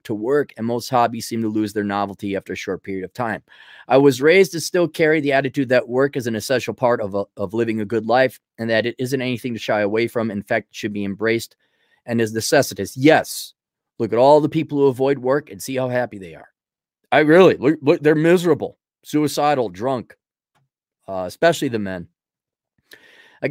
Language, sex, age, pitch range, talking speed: English, male, 30-49, 110-145 Hz, 205 wpm